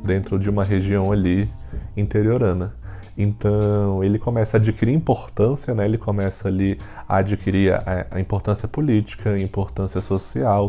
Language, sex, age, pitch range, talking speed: Portuguese, male, 20-39, 95-120 Hz, 140 wpm